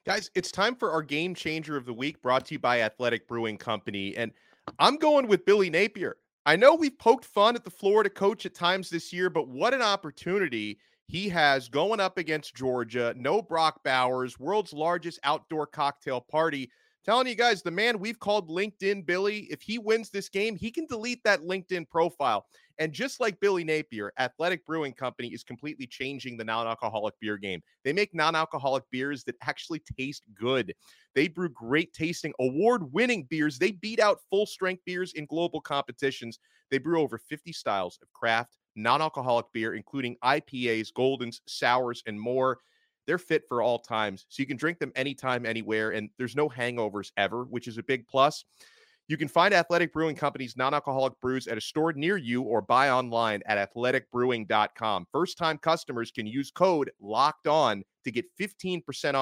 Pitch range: 125-180 Hz